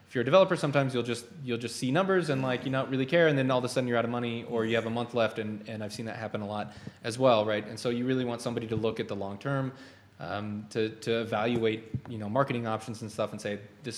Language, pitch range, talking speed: English, 105-130 Hz, 295 wpm